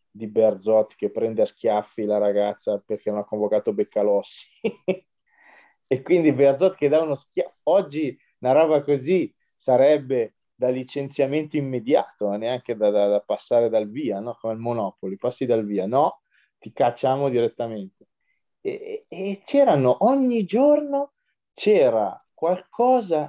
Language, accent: Italian, native